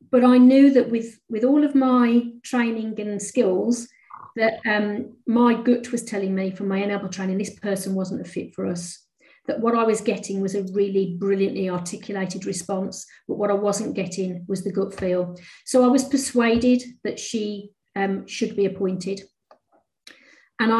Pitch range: 195-235 Hz